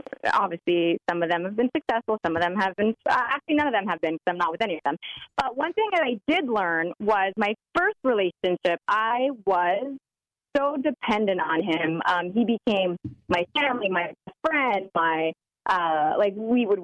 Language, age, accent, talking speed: English, 30-49, American, 195 wpm